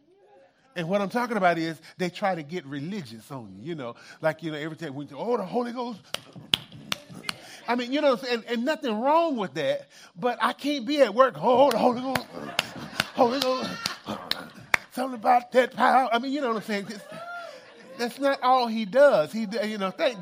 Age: 40-59